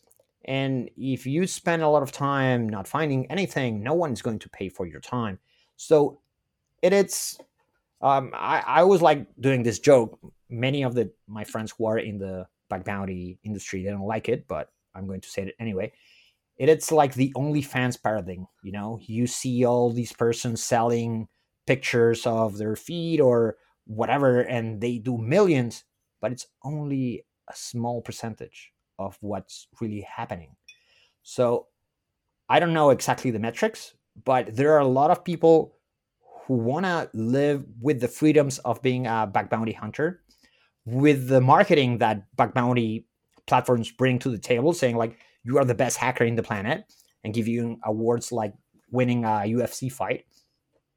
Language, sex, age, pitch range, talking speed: English, male, 30-49, 110-135 Hz, 170 wpm